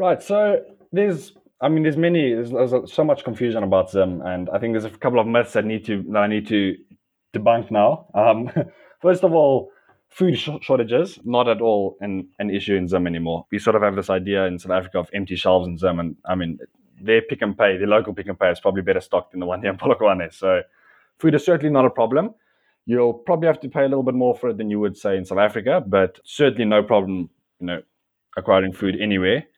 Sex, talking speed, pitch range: male, 235 wpm, 100-145 Hz